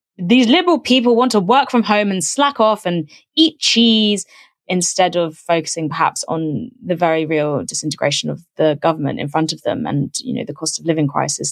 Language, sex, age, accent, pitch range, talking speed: English, female, 20-39, British, 170-240 Hz, 200 wpm